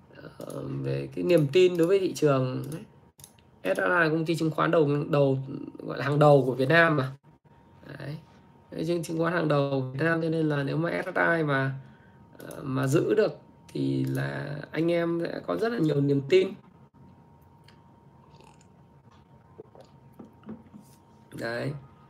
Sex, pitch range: male, 135-170 Hz